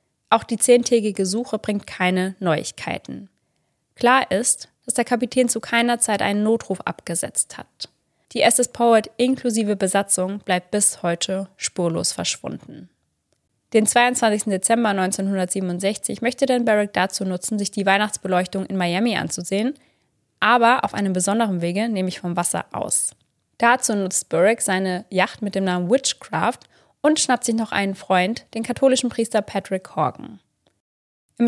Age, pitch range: 20-39, 190-230 Hz